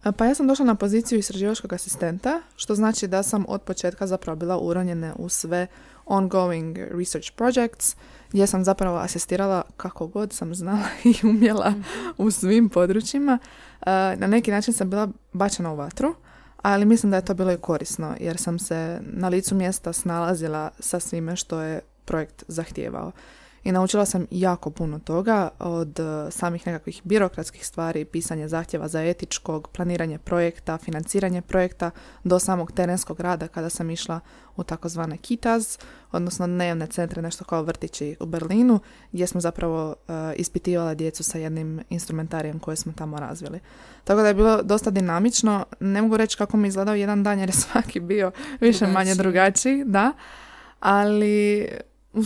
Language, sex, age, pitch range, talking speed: Croatian, female, 20-39, 165-205 Hz, 155 wpm